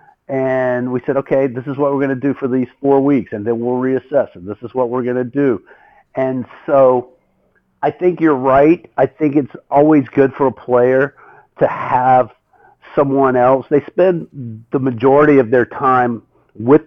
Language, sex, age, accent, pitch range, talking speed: English, male, 50-69, American, 120-140 Hz, 190 wpm